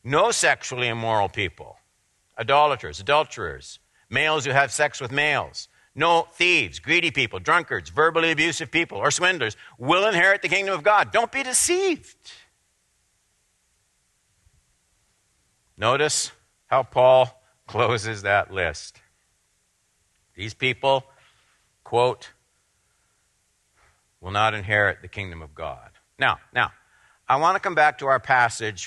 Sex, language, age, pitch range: male, English, 60-79, 110-170 Hz